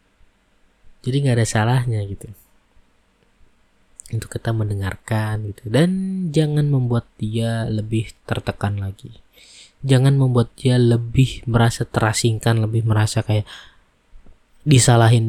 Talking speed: 100 wpm